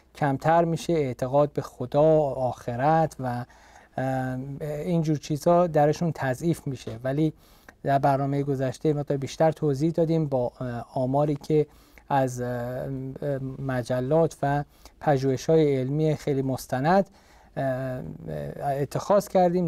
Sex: male